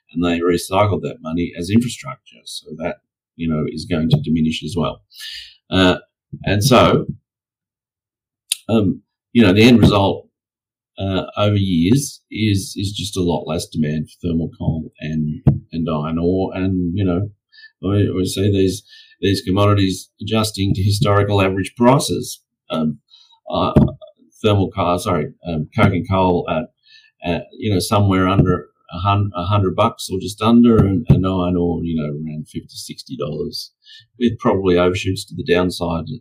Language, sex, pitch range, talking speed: English, male, 85-115 Hz, 155 wpm